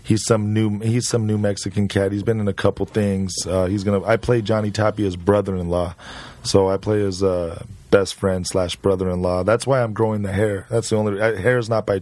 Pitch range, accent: 100-115 Hz, American